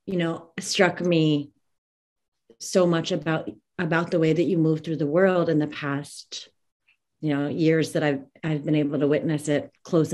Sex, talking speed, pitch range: female, 185 wpm, 155-190 Hz